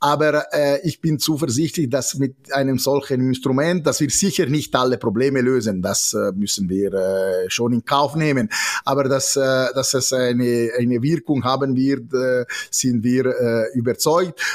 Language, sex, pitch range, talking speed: German, male, 120-140 Hz, 170 wpm